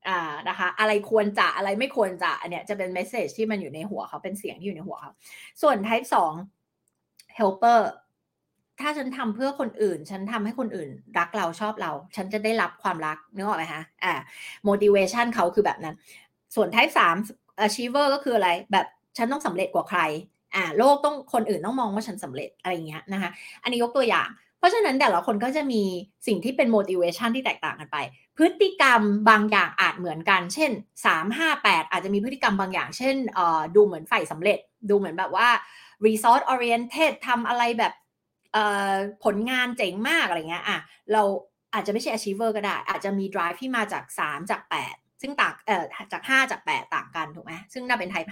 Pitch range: 195-245 Hz